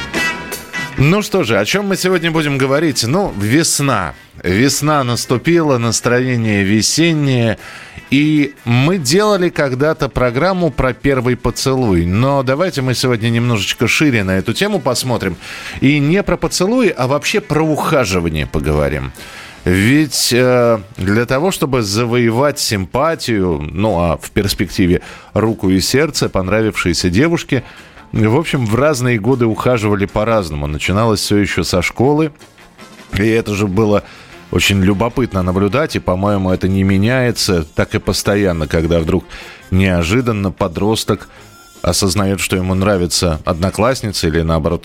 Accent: native